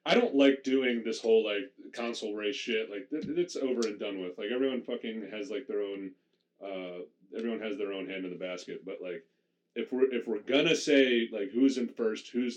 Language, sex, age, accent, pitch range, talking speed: English, male, 30-49, American, 90-115 Hz, 210 wpm